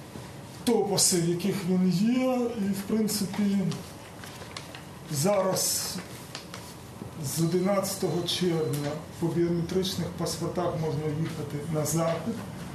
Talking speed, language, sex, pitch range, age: 80 wpm, Ukrainian, male, 160-190 Hz, 20-39